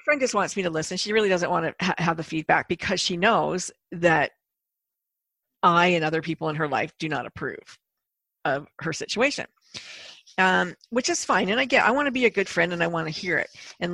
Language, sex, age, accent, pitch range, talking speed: English, female, 50-69, American, 160-195 Hz, 230 wpm